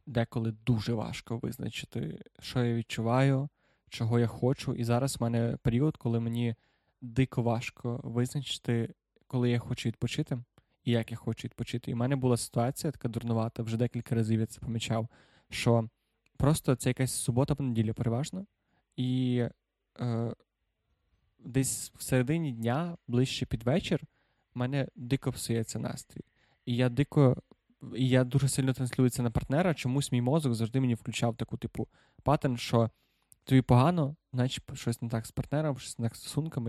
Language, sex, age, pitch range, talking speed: Ukrainian, male, 20-39, 115-135 Hz, 155 wpm